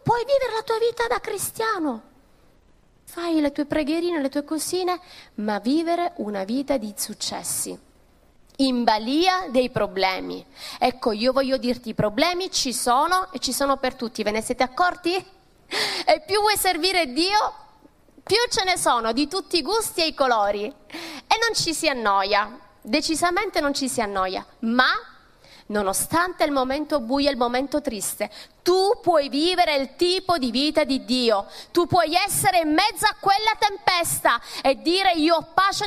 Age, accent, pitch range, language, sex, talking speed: 30-49, native, 255-360 Hz, Italian, female, 165 wpm